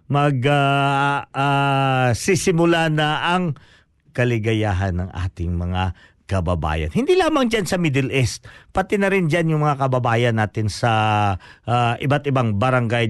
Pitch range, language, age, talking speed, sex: 115-150 Hz, Filipino, 50-69, 130 wpm, male